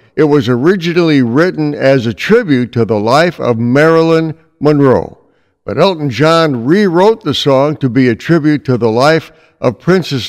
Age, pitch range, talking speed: 60-79, 125-165 Hz, 165 wpm